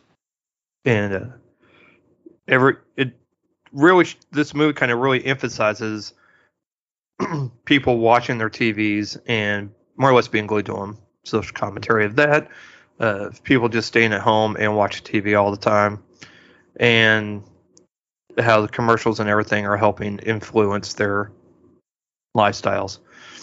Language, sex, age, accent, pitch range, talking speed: English, male, 30-49, American, 105-120 Hz, 135 wpm